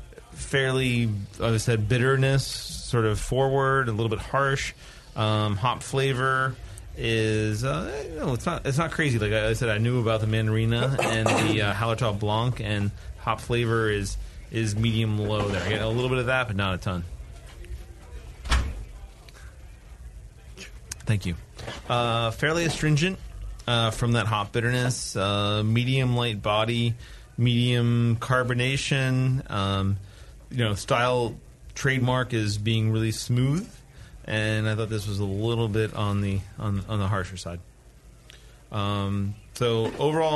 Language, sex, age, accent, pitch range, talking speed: English, male, 30-49, American, 100-125 Hz, 145 wpm